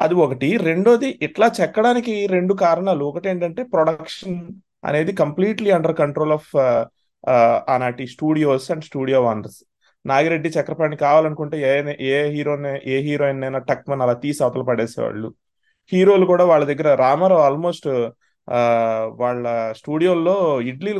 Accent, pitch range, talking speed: native, 140-190 Hz, 125 wpm